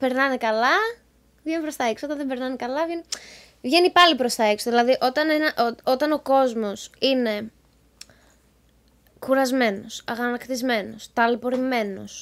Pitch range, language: 235-300 Hz, Greek